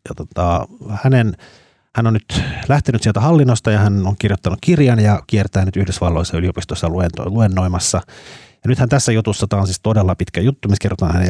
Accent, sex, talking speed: native, male, 175 wpm